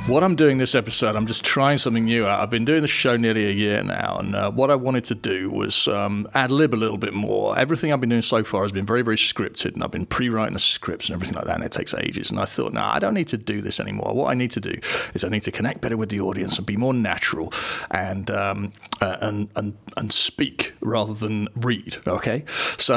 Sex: male